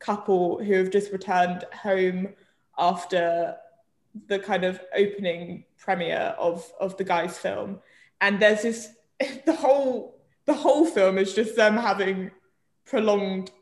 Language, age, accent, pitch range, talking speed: English, 20-39, British, 190-215 Hz, 130 wpm